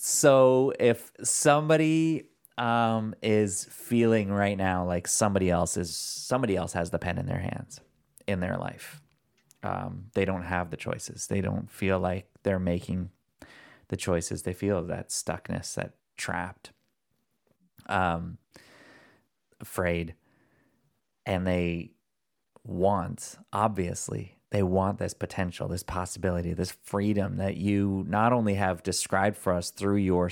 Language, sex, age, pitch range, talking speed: English, male, 30-49, 90-105 Hz, 135 wpm